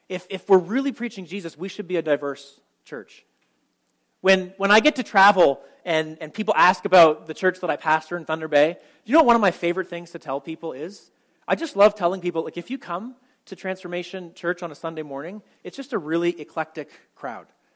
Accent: American